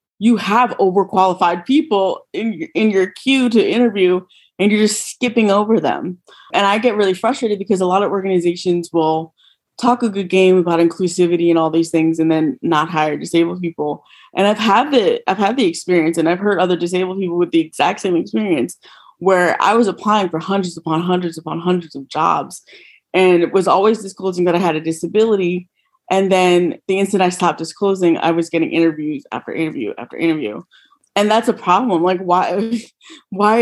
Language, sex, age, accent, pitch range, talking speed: English, female, 20-39, American, 175-210 Hz, 195 wpm